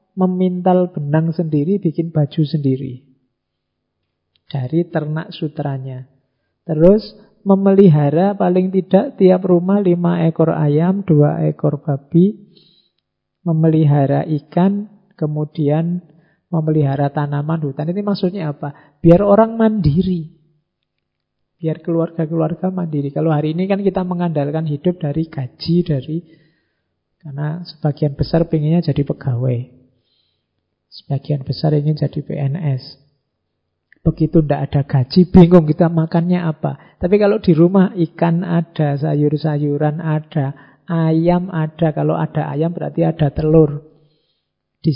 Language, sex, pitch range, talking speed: Indonesian, male, 140-170 Hz, 110 wpm